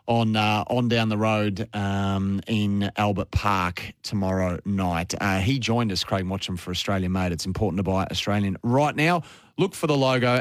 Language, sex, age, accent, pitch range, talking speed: English, male, 30-49, Australian, 100-125 Hz, 185 wpm